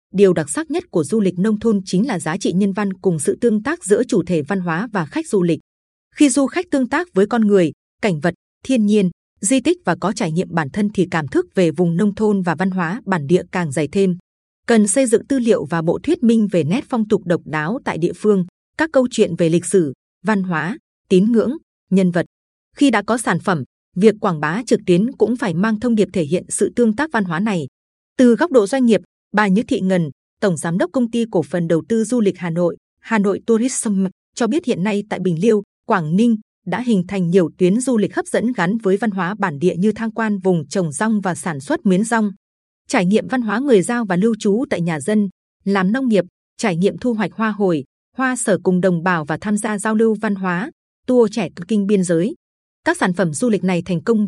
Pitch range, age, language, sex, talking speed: 180-225 Hz, 20-39, Vietnamese, female, 245 wpm